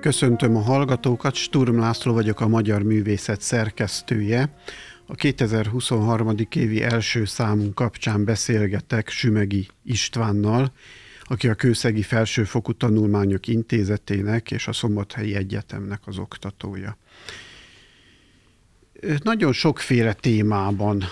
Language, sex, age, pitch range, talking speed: Hungarian, male, 50-69, 110-125 Hz, 95 wpm